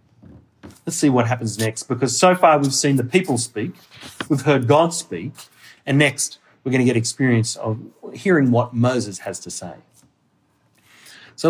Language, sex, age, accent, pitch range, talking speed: English, male, 30-49, Australian, 120-185 Hz, 165 wpm